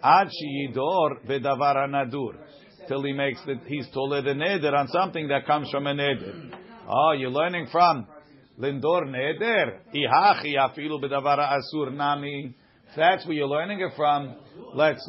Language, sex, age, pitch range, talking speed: English, male, 50-69, 135-160 Hz, 120 wpm